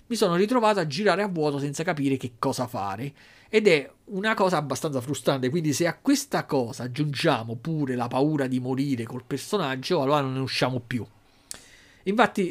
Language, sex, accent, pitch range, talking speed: Italian, male, native, 130-170 Hz, 175 wpm